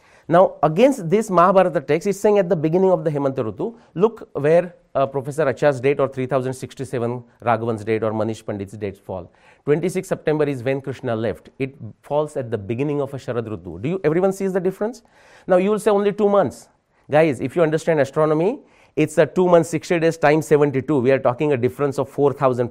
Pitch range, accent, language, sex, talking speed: 125-170 Hz, Indian, English, male, 200 wpm